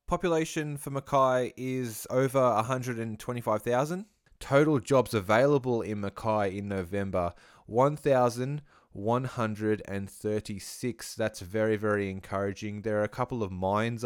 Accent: Australian